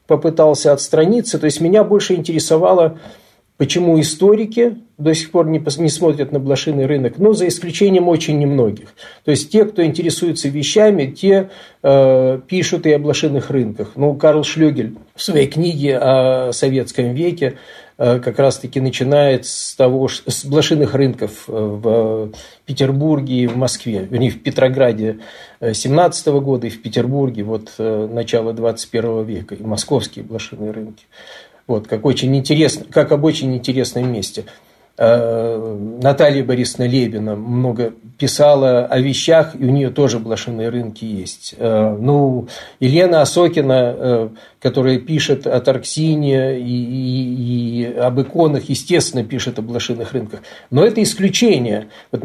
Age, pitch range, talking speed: 40-59, 120-155 Hz, 135 wpm